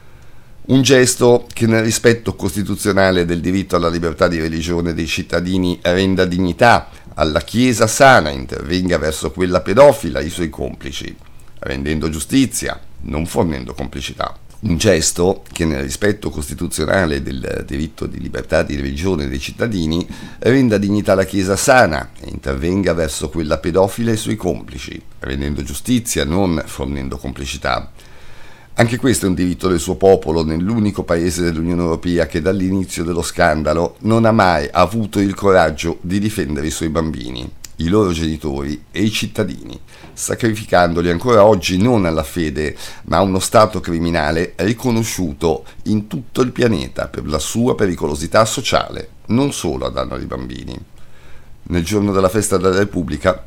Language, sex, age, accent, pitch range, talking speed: Italian, male, 50-69, native, 80-100 Hz, 145 wpm